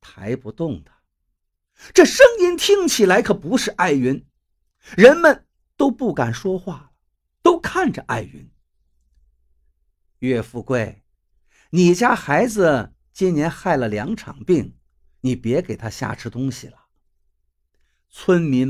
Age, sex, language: 50-69, male, Chinese